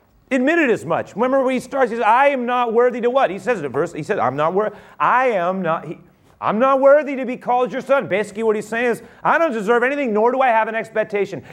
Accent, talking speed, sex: American, 275 wpm, male